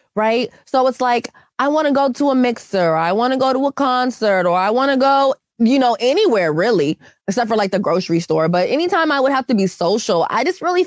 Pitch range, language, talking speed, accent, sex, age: 190-260 Hz, English, 250 wpm, American, female, 20-39